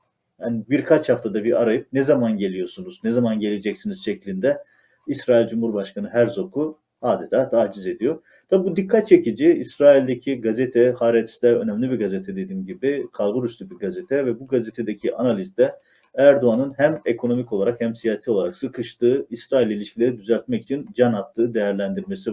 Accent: native